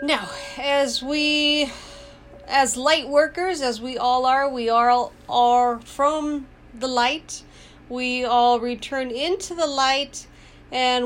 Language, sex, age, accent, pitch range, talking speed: English, female, 40-59, American, 220-255 Hz, 125 wpm